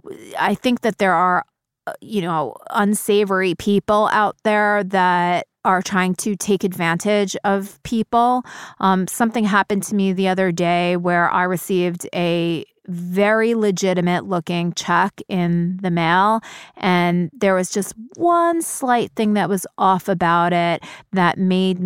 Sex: female